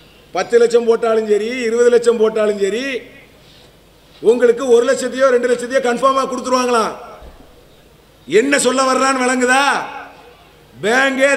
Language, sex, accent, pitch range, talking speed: English, male, Indian, 235-270 Hz, 75 wpm